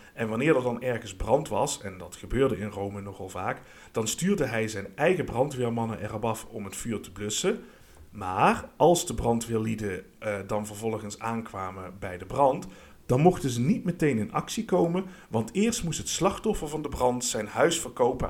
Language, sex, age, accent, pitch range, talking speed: Dutch, male, 50-69, Dutch, 100-145 Hz, 185 wpm